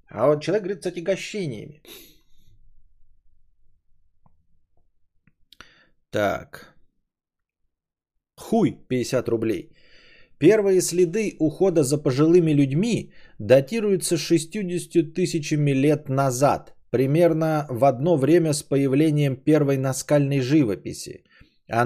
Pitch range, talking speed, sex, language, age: 110-160 Hz, 85 wpm, male, Bulgarian, 30-49